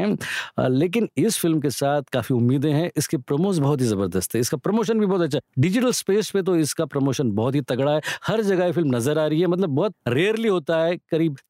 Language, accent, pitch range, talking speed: Hindi, native, 120-170 Hz, 50 wpm